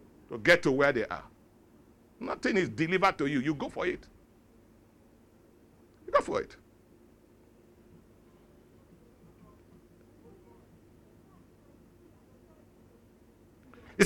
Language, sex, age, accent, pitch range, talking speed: English, male, 50-69, Nigerian, 175-245 Hz, 85 wpm